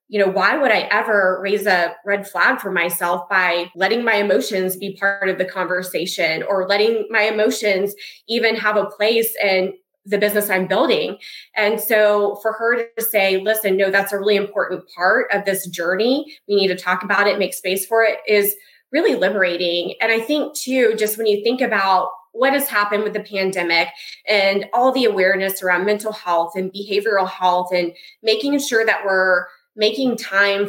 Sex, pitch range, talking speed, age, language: female, 185-215 Hz, 185 wpm, 20-39, English